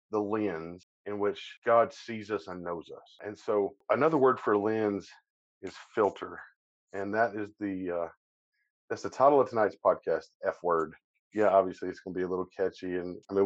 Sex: male